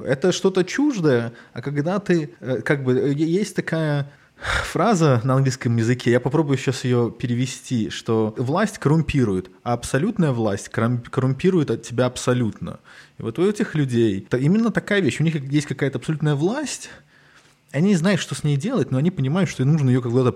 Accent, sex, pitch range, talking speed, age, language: native, male, 125-170 Hz, 170 wpm, 20-39, Russian